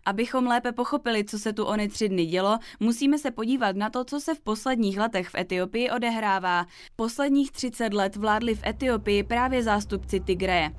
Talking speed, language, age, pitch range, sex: 180 wpm, Czech, 20-39, 195-245 Hz, female